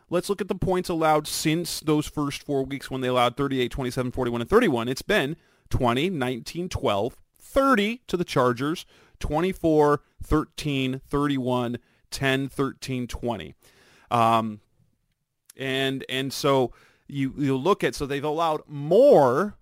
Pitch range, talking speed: 120-155 Hz, 140 wpm